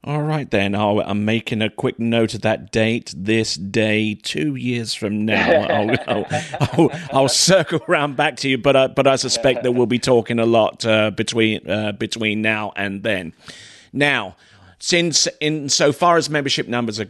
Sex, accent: male, British